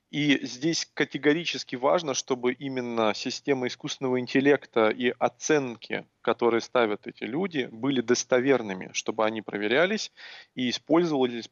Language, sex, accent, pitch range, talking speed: Russian, male, native, 125-165 Hz, 115 wpm